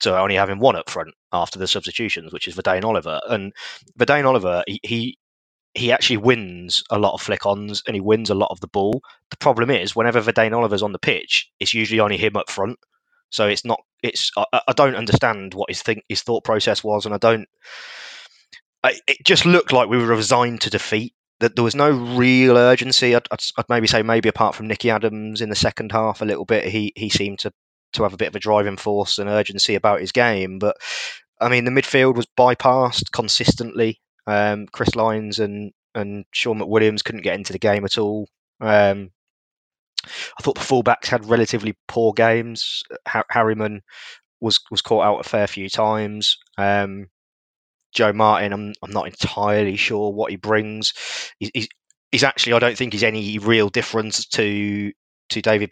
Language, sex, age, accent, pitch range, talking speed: English, male, 20-39, British, 100-115 Hz, 195 wpm